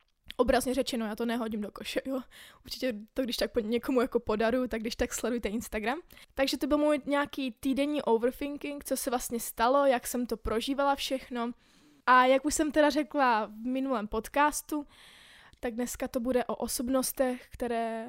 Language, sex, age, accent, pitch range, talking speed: Czech, female, 20-39, native, 225-260 Hz, 175 wpm